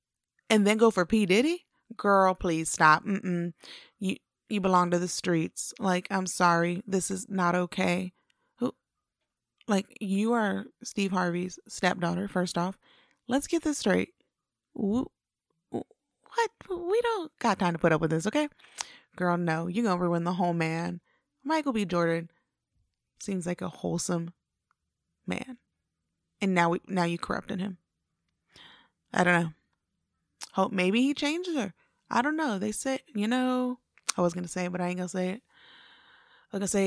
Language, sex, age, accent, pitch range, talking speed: English, female, 20-39, American, 180-250 Hz, 165 wpm